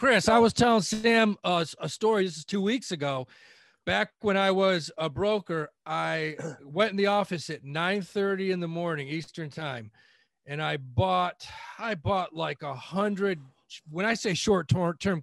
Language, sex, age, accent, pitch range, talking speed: English, male, 40-59, American, 160-215 Hz, 170 wpm